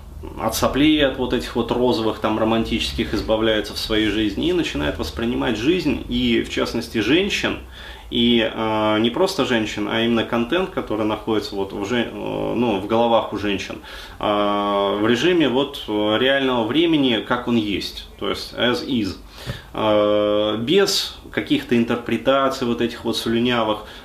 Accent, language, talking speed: native, Russian, 150 wpm